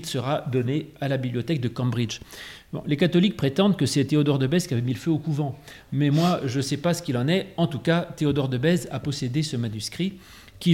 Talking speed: 240 wpm